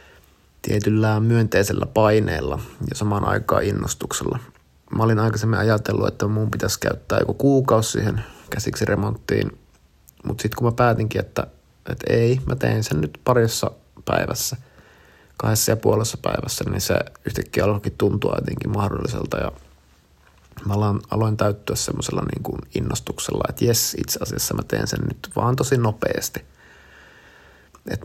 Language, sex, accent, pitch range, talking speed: Finnish, male, native, 80-115 Hz, 135 wpm